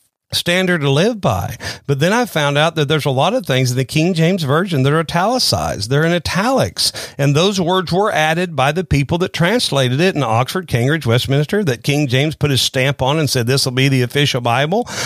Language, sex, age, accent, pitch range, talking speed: English, male, 40-59, American, 140-180 Hz, 225 wpm